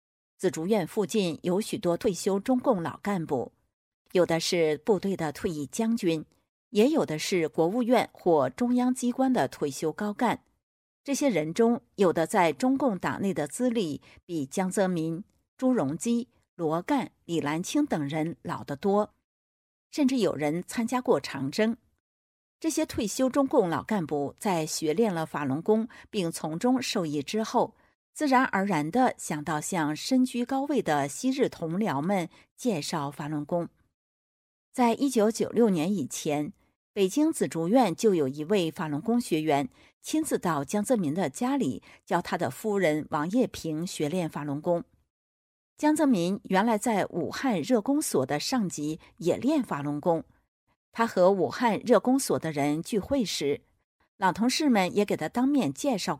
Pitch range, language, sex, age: 155-240 Hz, Chinese, female, 50-69